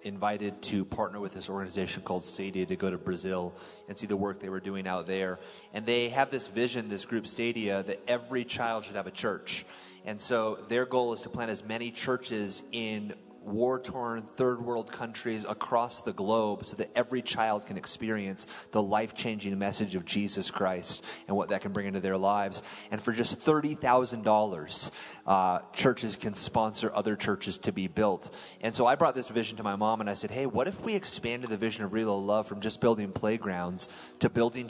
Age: 30-49